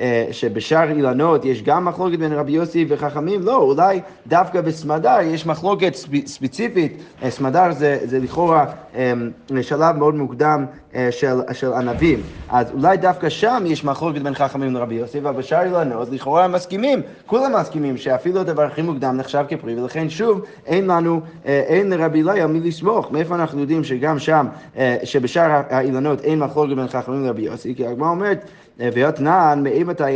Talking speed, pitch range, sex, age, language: 150 wpm, 130-165 Hz, male, 30-49, Hebrew